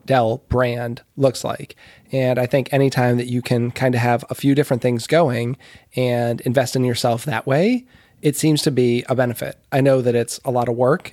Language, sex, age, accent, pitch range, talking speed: English, male, 20-39, American, 120-135 Hz, 210 wpm